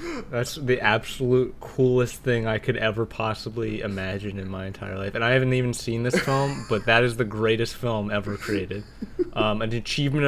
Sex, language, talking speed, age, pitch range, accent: male, English, 185 wpm, 20-39, 110-135 Hz, American